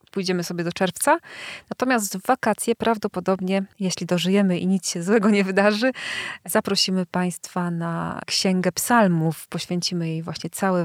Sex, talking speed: female, 140 wpm